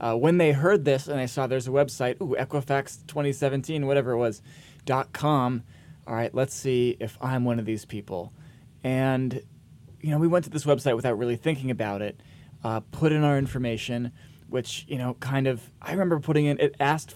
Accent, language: American, English